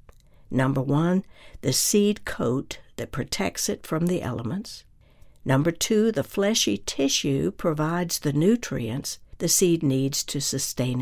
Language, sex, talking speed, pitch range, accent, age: English, female, 130 wpm, 135-205 Hz, American, 60-79